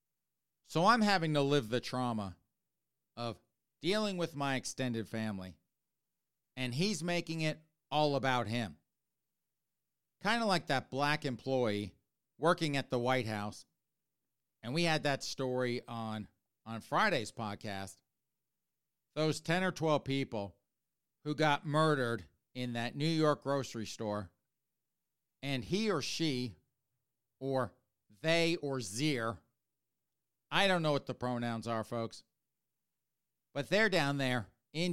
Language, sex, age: English, male, 40-59